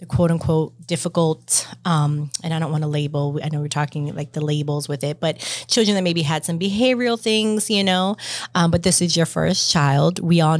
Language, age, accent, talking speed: English, 30-49, American, 215 wpm